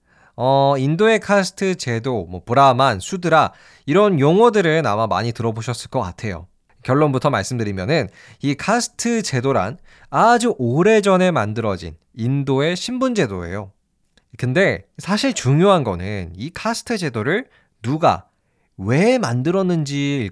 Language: Korean